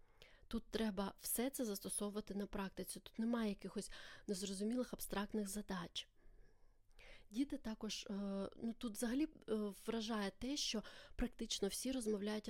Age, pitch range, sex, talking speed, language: 20-39, 195-230 Hz, female, 115 wpm, Ukrainian